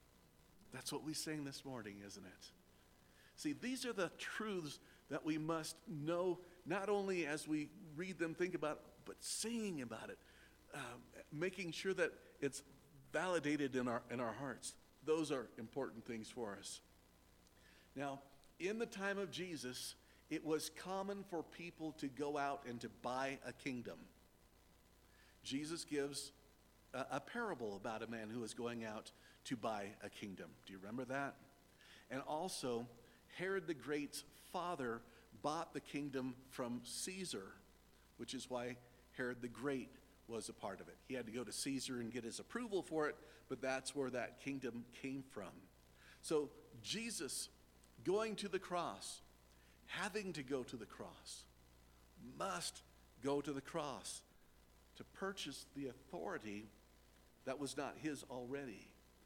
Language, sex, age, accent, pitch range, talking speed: English, male, 50-69, American, 105-155 Hz, 155 wpm